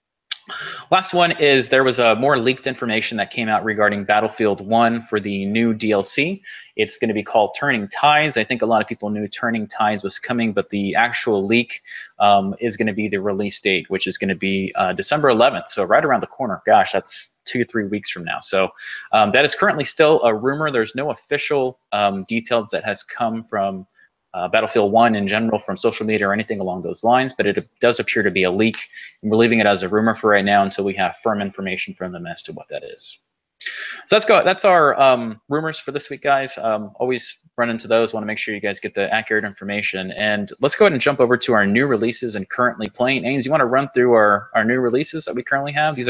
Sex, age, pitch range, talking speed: male, 20-39, 105-130 Hz, 240 wpm